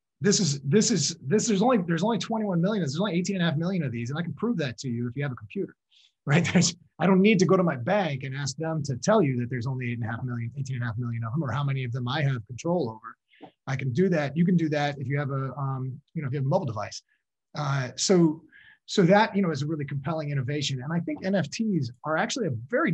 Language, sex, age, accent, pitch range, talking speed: English, male, 30-49, American, 135-185 Hz, 295 wpm